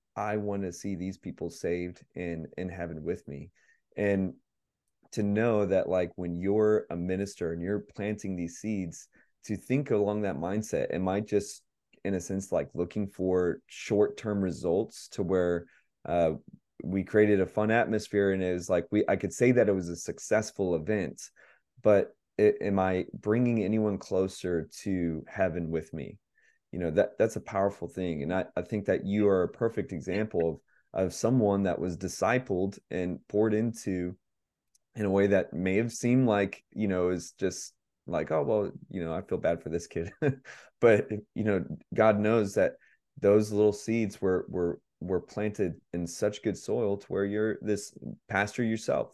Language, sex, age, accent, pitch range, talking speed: English, male, 30-49, American, 90-105 Hz, 180 wpm